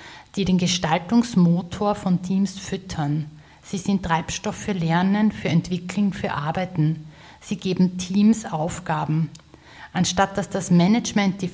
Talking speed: 125 wpm